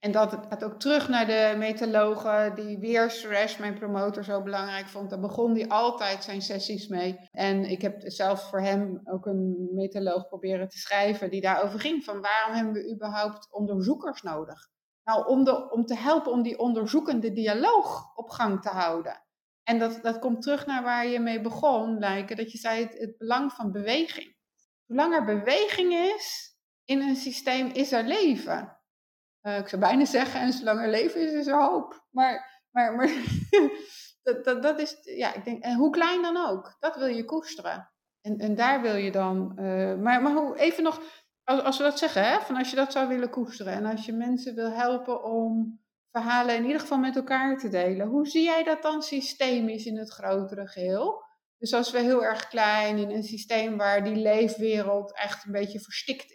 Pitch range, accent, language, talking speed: 205-265 Hz, Dutch, Dutch, 200 wpm